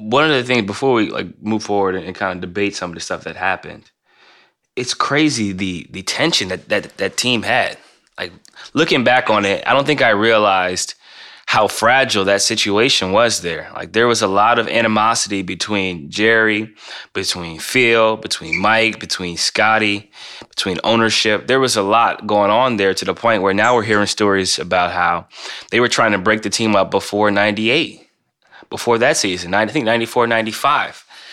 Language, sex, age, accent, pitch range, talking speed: English, male, 20-39, American, 95-115 Hz, 185 wpm